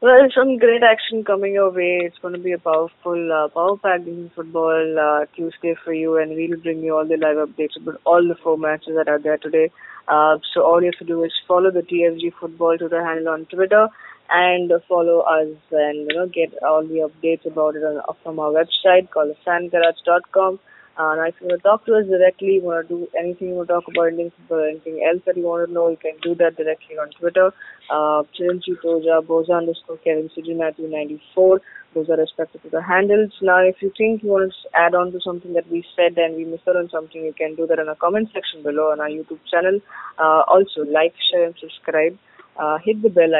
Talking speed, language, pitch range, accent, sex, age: 220 wpm, English, 160-180 Hz, Indian, female, 20-39